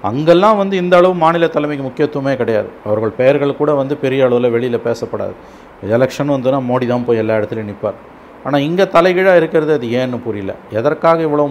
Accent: native